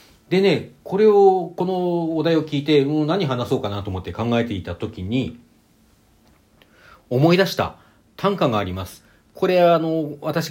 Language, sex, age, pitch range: Japanese, male, 40-59, 95-150 Hz